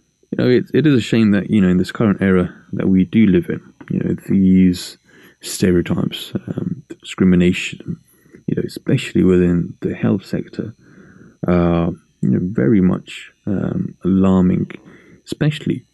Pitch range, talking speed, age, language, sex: 90-105 Hz, 160 wpm, 20-39, English, male